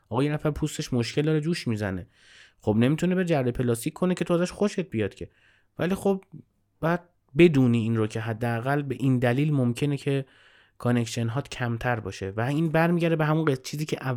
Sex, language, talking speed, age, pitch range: male, Persian, 180 wpm, 30-49, 110-140 Hz